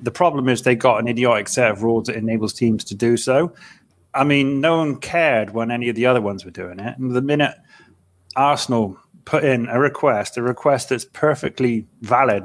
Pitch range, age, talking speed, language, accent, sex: 110-135 Hz, 30-49, 205 wpm, English, British, male